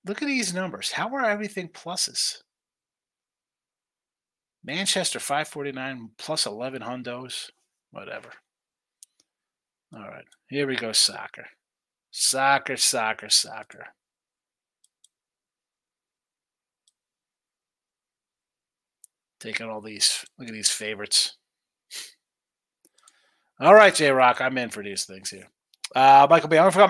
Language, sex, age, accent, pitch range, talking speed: English, male, 30-49, American, 130-185 Hz, 100 wpm